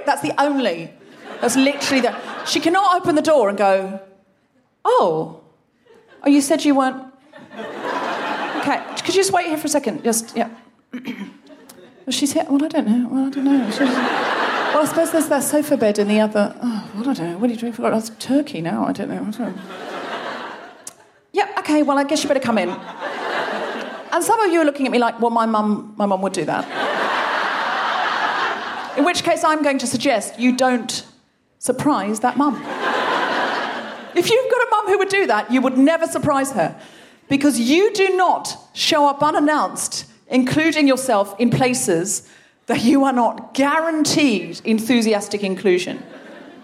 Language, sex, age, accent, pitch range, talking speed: English, female, 30-49, British, 235-310 Hz, 180 wpm